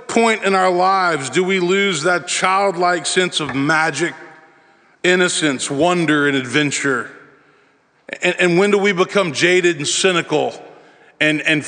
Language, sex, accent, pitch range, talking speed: English, male, American, 155-190 Hz, 140 wpm